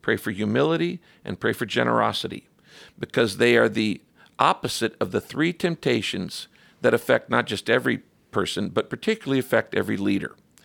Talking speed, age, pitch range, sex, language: 150 wpm, 50-69, 110-150 Hz, male, English